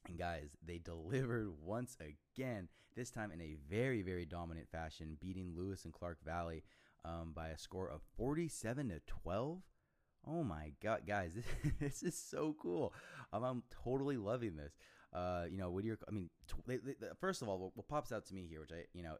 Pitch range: 85-115 Hz